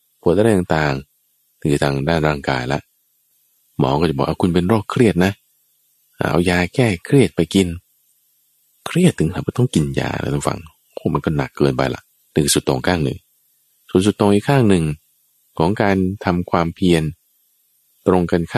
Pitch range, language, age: 70-105 Hz, Thai, 20-39